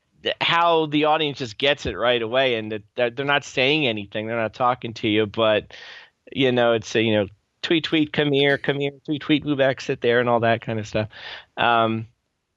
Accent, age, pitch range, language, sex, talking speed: American, 30-49, 110-140 Hz, English, male, 215 wpm